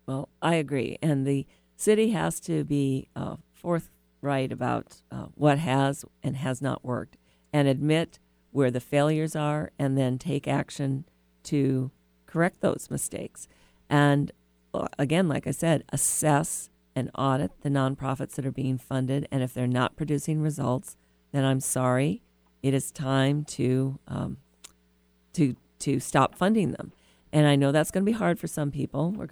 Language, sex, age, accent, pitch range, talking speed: English, female, 50-69, American, 130-155 Hz, 160 wpm